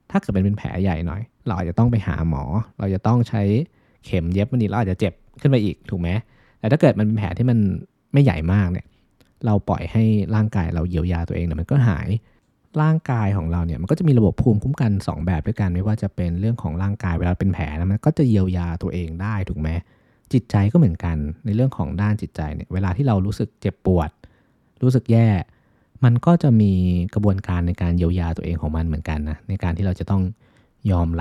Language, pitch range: Thai, 90-115 Hz